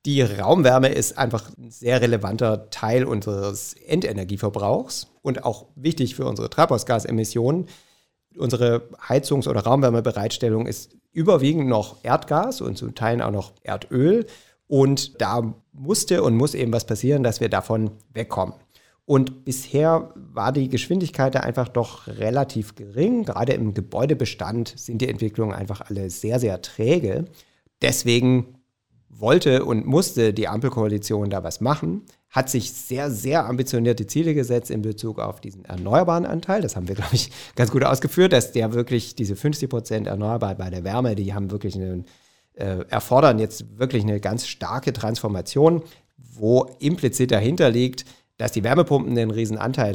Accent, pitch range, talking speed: German, 105-130 Hz, 150 wpm